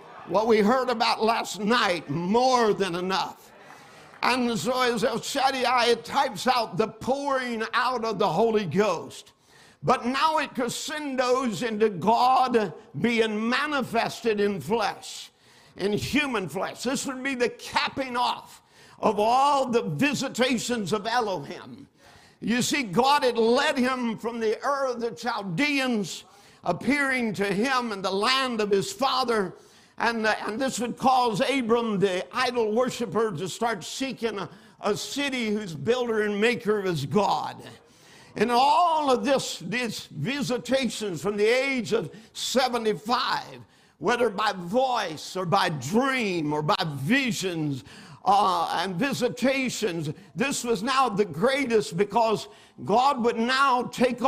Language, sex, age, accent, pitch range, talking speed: English, male, 60-79, American, 210-255 Hz, 135 wpm